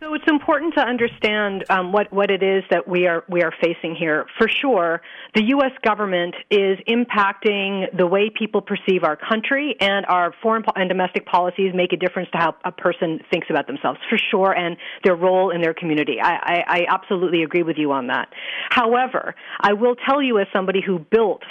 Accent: American